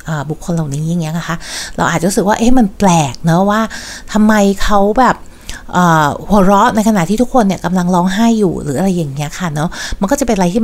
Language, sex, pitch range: Thai, female, 165-210 Hz